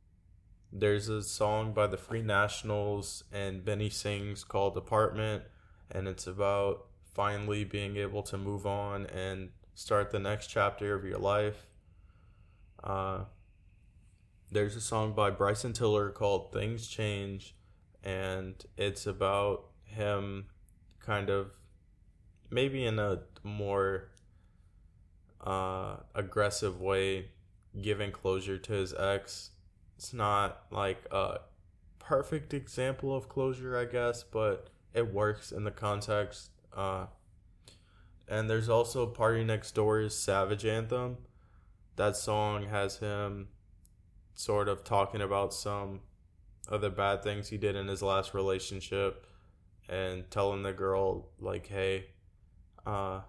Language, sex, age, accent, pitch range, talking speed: English, male, 20-39, American, 95-105 Hz, 120 wpm